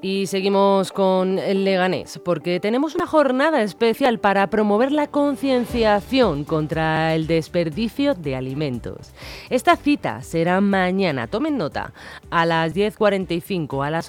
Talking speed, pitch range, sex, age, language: 130 wpm, 165-225 Hz, female, 30-49, Spanish